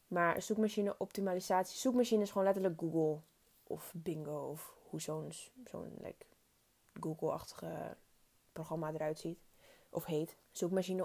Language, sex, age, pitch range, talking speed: Dutch, female, 20-39, 160-185 Hz, 120 wpm